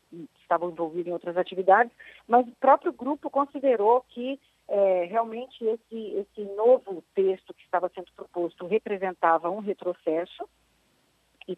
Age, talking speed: 40-59, 125 wpm